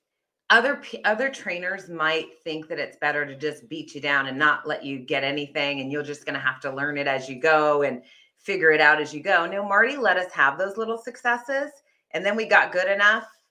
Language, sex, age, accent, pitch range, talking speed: English, female, 30-49, American, 155-240 Hz, 230 wpm